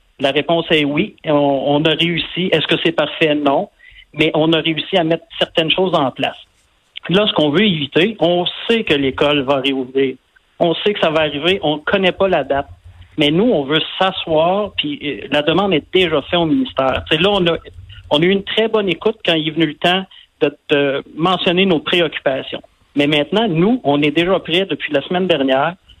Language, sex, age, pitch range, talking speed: French, male, 50-69, 145-190 Hz, 215 wpm